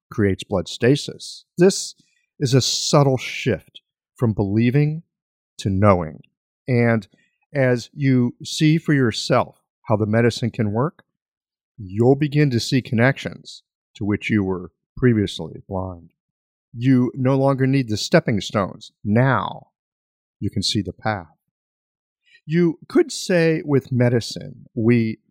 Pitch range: 105-145 Hz